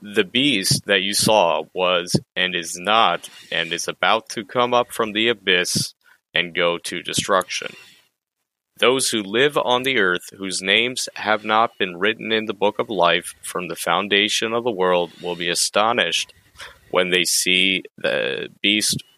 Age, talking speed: 30-49, 165 wpm